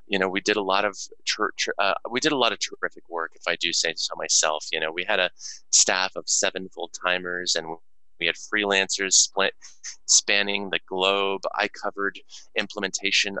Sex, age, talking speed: male, 20-39, 195 wpm